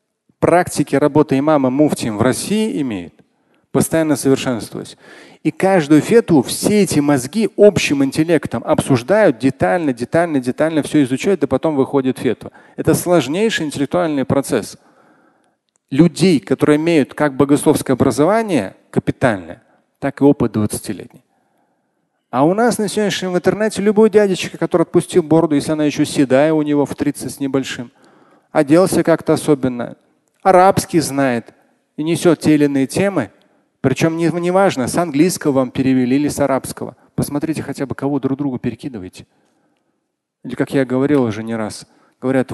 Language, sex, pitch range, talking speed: Russian, male, 135-170 Hz, 140 wpm